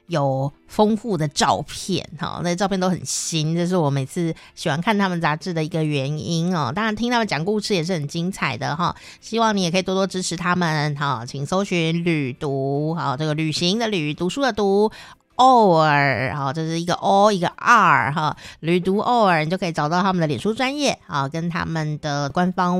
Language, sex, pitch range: Chinese, female, 155-200 Hz